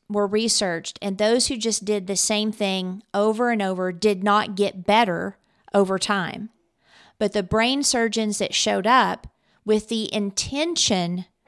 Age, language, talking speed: 40-59, English, 150 wpm